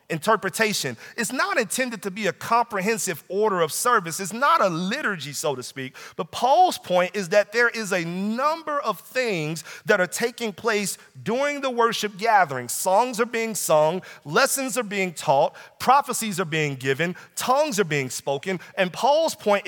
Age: 40-59